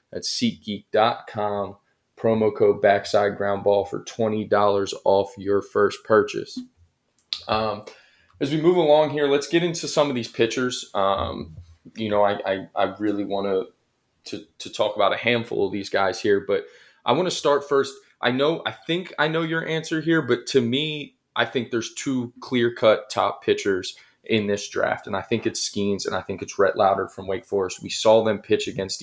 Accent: American